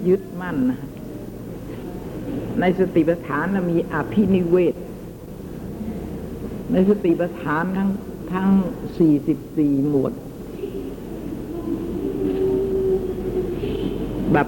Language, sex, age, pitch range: Thai, female, 60-79, 135-185 Hz